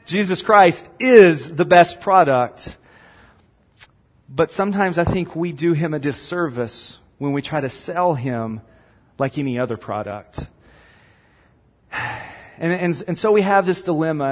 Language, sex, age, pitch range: English, male, 40-59, 115-160 Hz